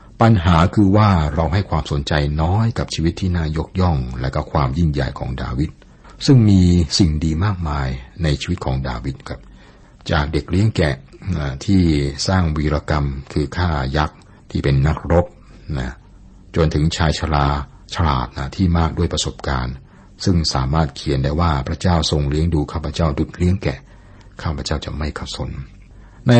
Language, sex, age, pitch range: Thai, male, 60-79, 70-95 Hz